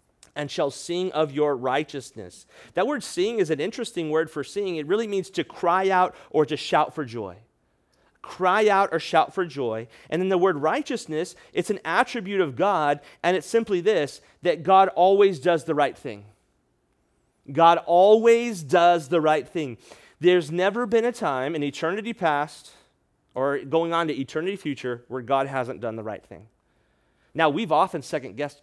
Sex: male